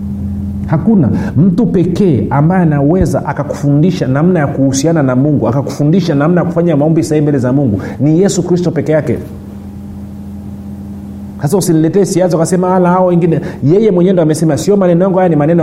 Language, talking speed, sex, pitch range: Swahili, 155 wpm, male, 120-180 Hz